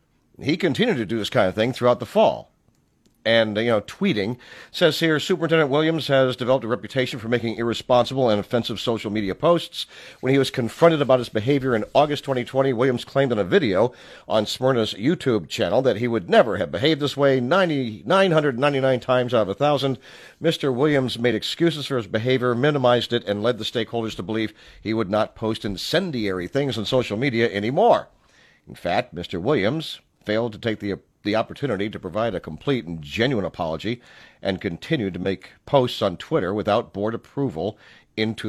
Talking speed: 185 wpm